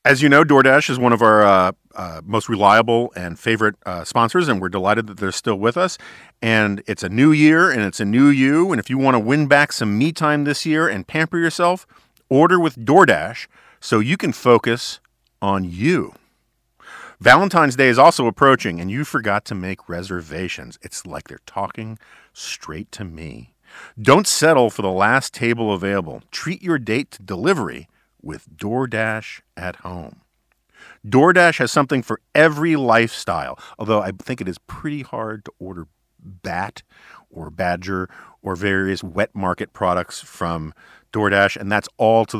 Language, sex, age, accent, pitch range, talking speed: English, male, 50-69, American, 100-145 Hz, 170 wpm